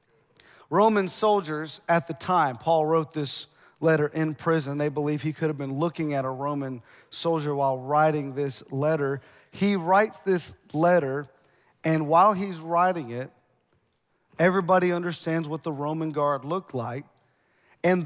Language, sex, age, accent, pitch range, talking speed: English, male, 40-59, American, 155-195 Hz, 145 wpm